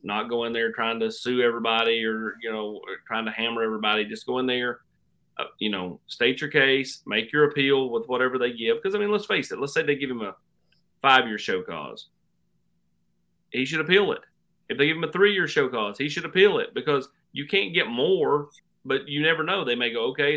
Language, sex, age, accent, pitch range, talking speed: English, male, 30-49, American, 110-155 Hz, 230 wpm